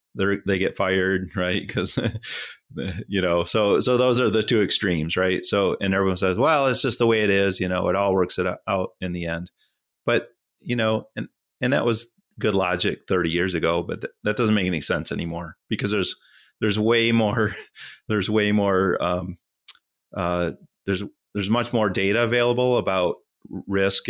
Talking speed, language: 185 wpm, English